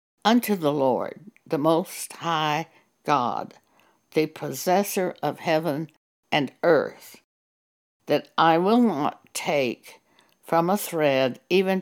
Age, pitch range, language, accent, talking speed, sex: 60-79, 145-190 Hz, English, American, 110 wpm, female